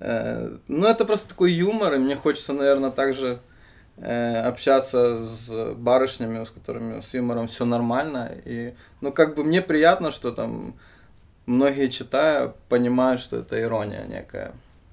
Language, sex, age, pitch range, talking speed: Russian, male, 20-39, 115-135 Hz, 140 wpm